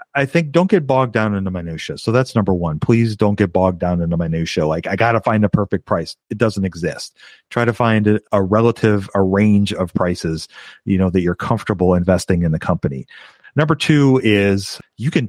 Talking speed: 215 wpm